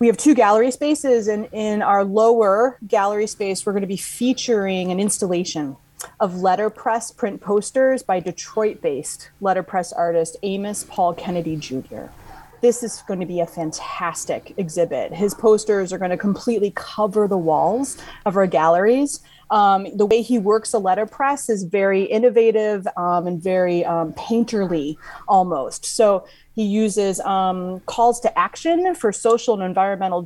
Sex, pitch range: female, 180-220 Hz